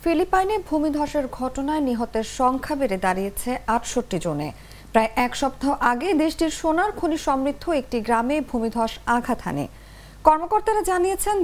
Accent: Indian